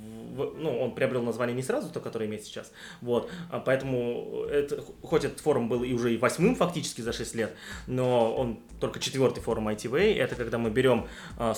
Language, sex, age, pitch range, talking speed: Russian, male, 20-39, 115-145 Hz, 195 wpm